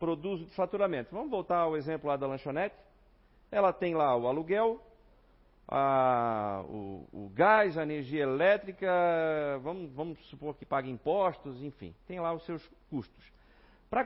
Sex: male